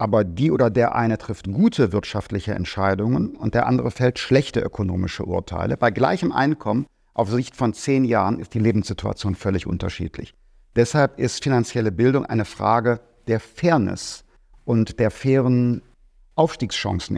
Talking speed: 145 wpm